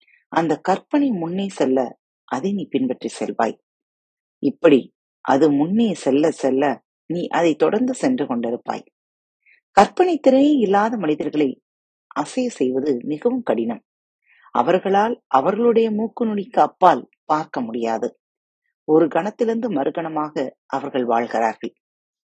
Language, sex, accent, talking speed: Tamil, female, native, 85 wpm